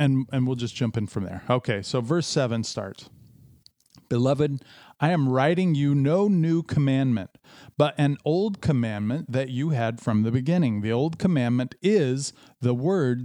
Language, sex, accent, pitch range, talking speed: English, male, American, 120-160 Hz, 170 wpm